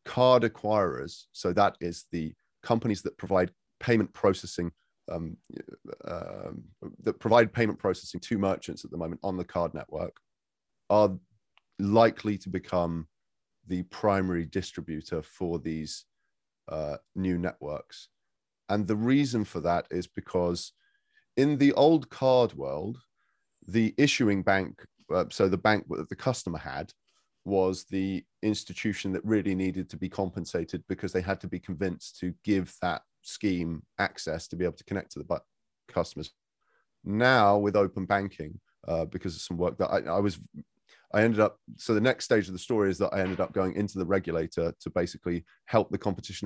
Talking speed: 165 wpm